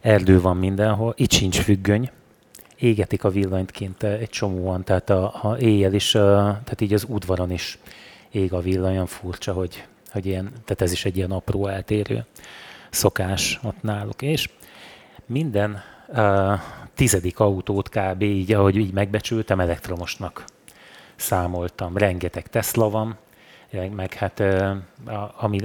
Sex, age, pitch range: male, 30-49, 95-110 Hz